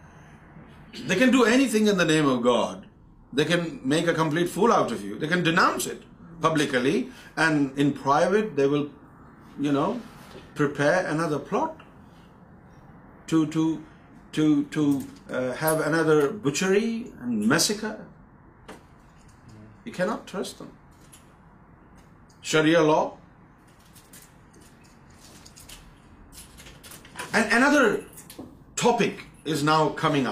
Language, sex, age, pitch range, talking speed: Urdu, male, 50-69, 140-195 Hz, 110 wpm